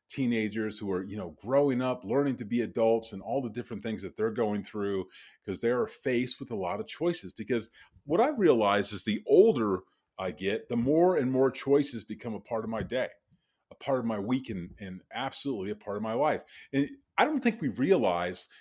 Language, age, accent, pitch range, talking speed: English, 30-49, American, 115-180 Hz, 220 wpm